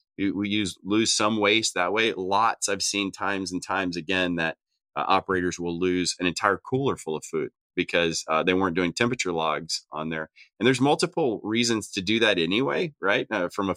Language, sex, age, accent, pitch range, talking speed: English, male, 30-49, American, 90-110 Hz, 200 wpm